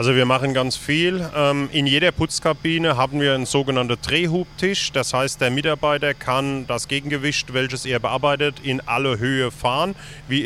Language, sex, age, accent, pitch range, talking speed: German, male, 40-59, German, 130-150 Hz, 160 wpm